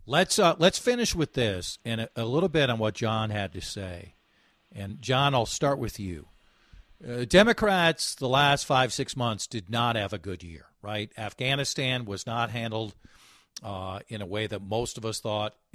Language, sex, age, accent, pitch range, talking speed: English, male, 50-69, American, 110-160 Hz, 190 wpm